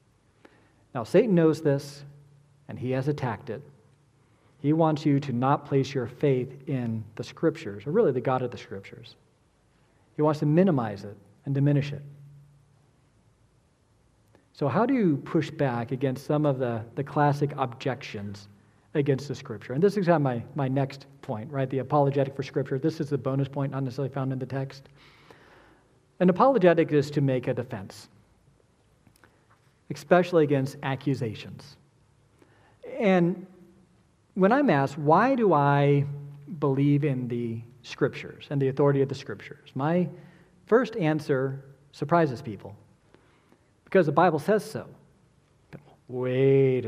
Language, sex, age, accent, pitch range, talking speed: English, male, 40-59, American, 125-155 Hz, 145 wpm